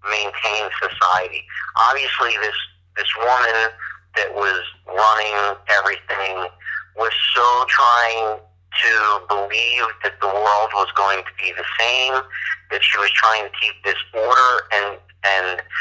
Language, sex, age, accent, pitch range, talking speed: English, male, 50-69, American, 90-110 Hz, 130 wpm